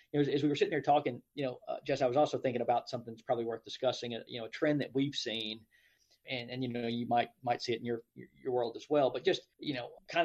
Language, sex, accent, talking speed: English, male, American, 280 wpm